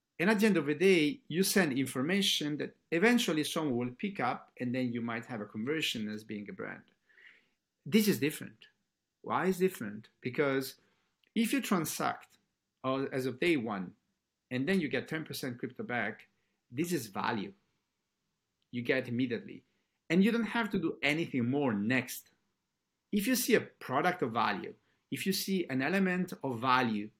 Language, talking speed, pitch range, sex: English, 170 wpm, 130-195 Hz, male